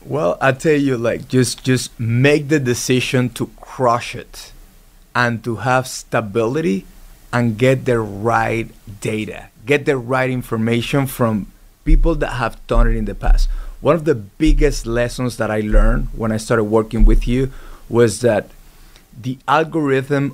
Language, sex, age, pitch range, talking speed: English, male, 30-49, 115-145 Hz, 155 wpm